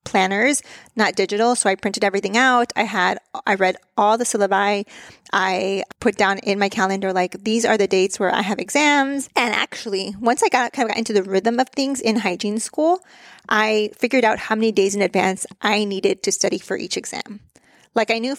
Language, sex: English, female